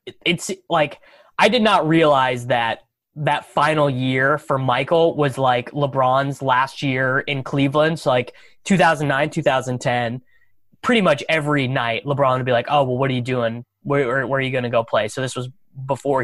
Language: English